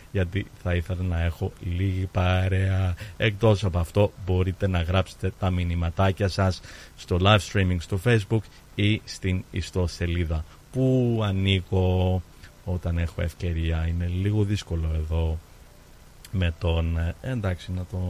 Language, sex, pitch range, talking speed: Greek, male, 90-105 Hz, 130 wpm